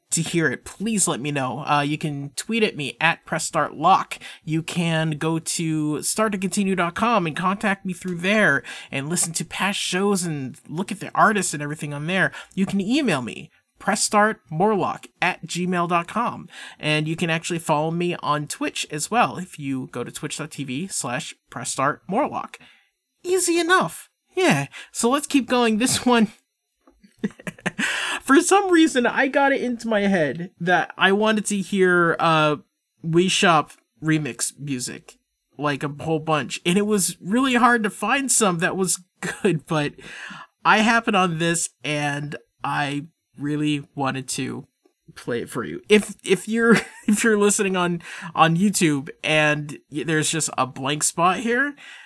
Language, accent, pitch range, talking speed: English, American, 150-210 Hz, 155 wpm